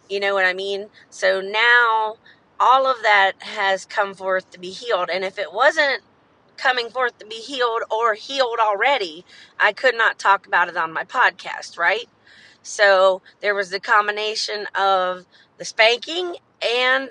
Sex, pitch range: female, 190-230 Hz